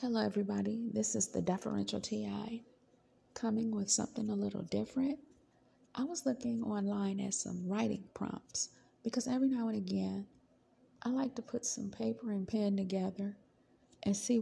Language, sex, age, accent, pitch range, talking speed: English, female, 40-59, American, 170-220 Hz, 155 wpm